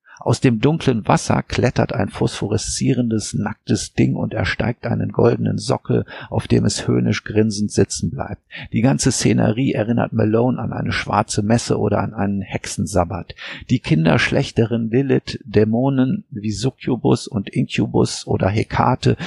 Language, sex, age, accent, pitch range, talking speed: German, male, 50-69, German, 100-120 Hz, 135 wpm